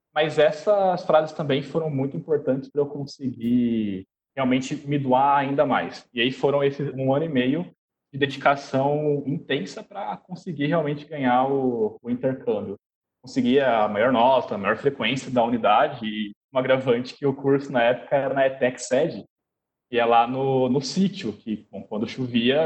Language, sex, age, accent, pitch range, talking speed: Portuguese, male, 20-39, Brazilian, 125-145 Hz, 165 wpm